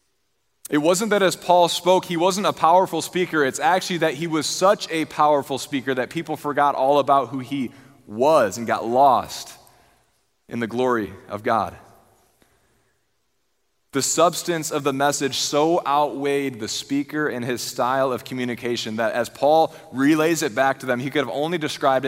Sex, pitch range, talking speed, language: male, 120-150 Hz, 170 wpm, English